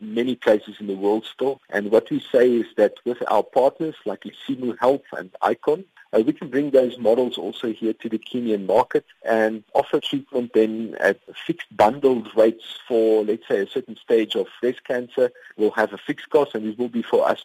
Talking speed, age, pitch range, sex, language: 205 wpm, 50-69, 110-150 Hz, male, English